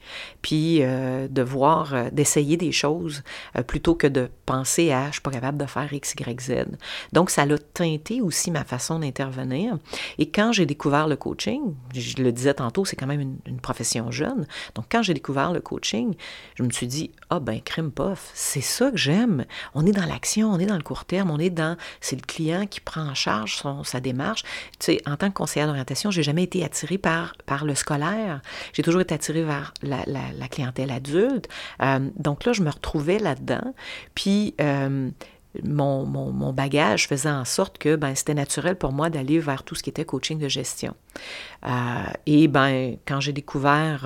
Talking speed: 210 wpm